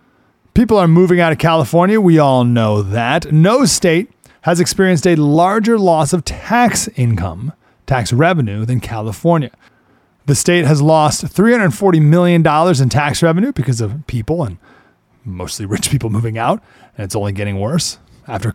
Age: 30-49